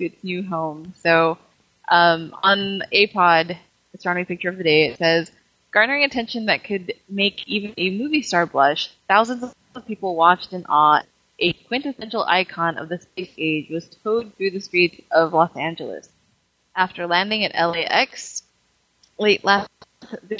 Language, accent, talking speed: English, American, 155 wpm